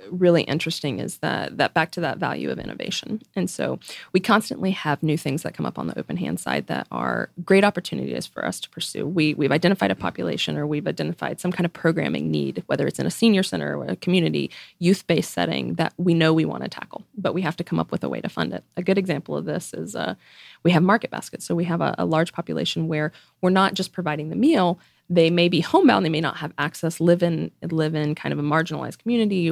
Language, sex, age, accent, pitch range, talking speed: English, female, 20-39, American, 155-190 Hz, 245 wpm